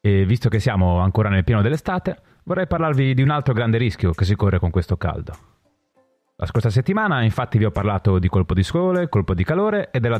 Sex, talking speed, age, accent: male, 220 wpm, 30-49, native